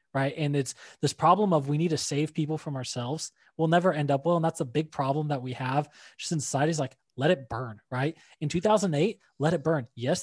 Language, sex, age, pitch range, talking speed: English, male, 20-39, 140-165 Hz, 240 wpm